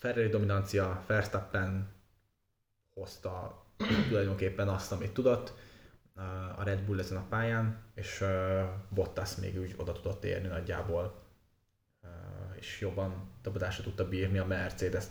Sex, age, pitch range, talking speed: male, 20-39, 95-105 Hz, 115 wpm